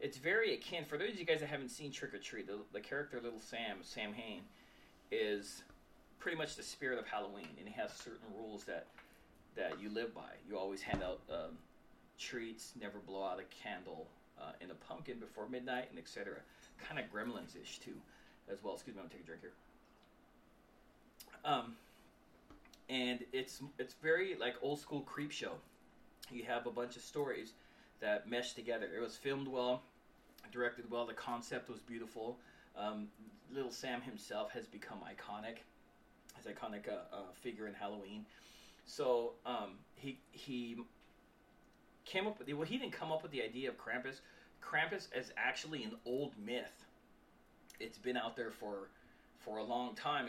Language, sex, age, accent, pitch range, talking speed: English, male, 30-49, American, 115-145 Hz, 180 wpm